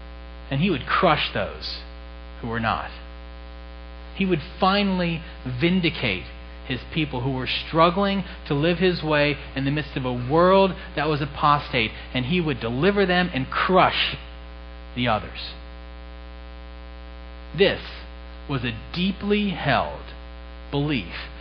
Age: 40-59